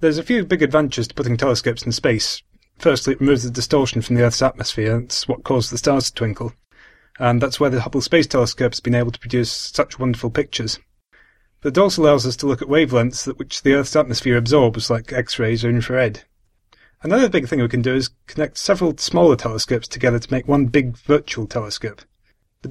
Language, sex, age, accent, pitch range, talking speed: English, male, 30-49, British, 120-140 Hz, 210 wpm